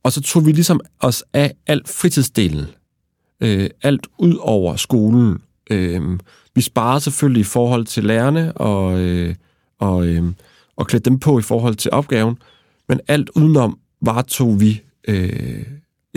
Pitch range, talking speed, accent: 100-130 Hz, 150 wpm, native